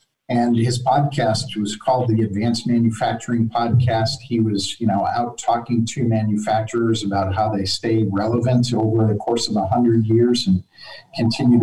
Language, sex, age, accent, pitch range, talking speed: English, male, 50-69, American, 110-125 Hz, 155 wpm